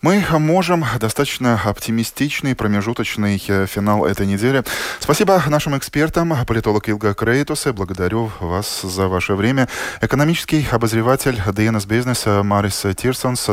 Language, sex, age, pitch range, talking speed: Russian, male, 20-39, 95-125 Hz, 115 wpm